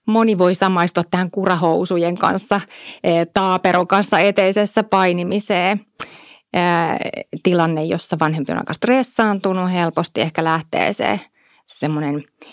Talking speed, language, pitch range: 100 wpm, Finnish, 160-205 Hz